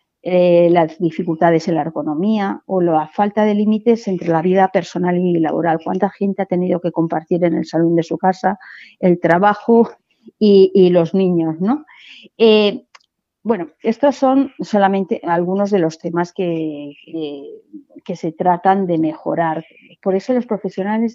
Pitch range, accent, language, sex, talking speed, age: 170-215 Hz, Spanish, Spanish, female, 155 wpm, 40-59